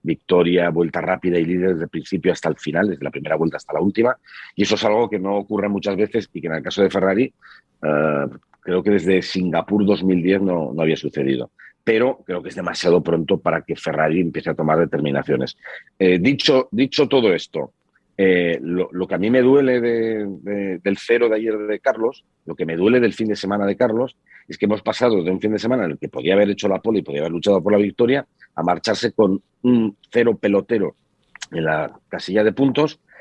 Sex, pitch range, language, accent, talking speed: male, 90-110 Hz, Spanish, Spanish, 220 wpm